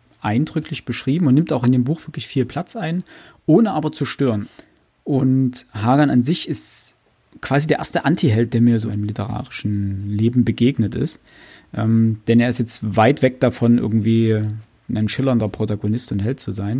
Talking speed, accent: 175 wpm, German